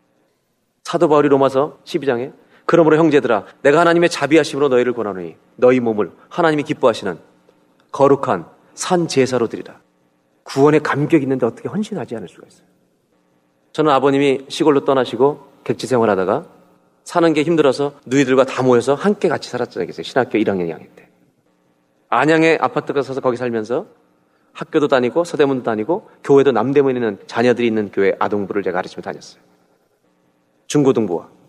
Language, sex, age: Korean, male, 40-59